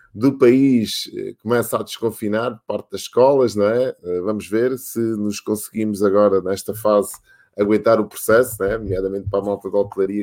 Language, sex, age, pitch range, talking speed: Portuguese, male, 20-39, 100-120 Hz, 170 wpm